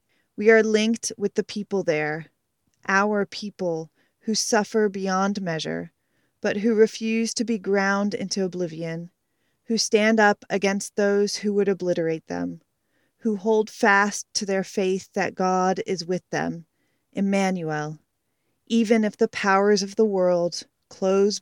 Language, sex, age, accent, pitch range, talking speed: English, female, 30-49, American, 180-220 Hz, 140 wpm